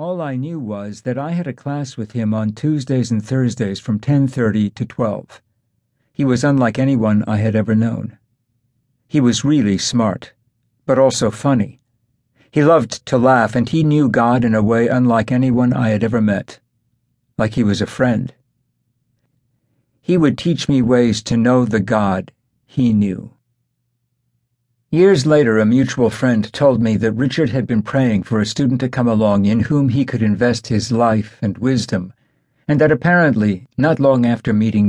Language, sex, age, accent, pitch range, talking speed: English, male, 60-79, American, 110-130 Hz, 175 wpm